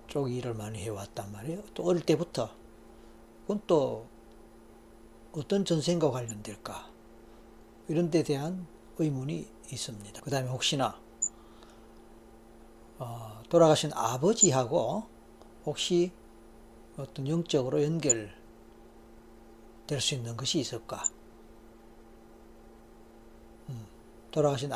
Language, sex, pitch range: Korean, male, 115-140 Hz